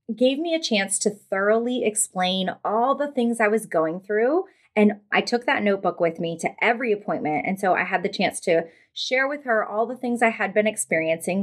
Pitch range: 180-225 Hz